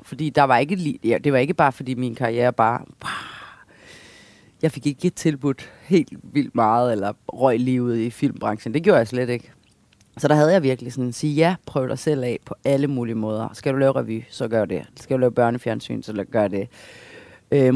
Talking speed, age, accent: 215 wpm, 30-49, native